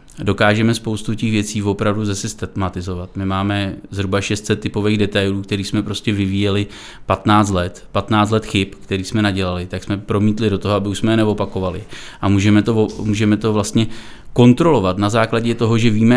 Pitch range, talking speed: 100-115 Hz, 170 wpm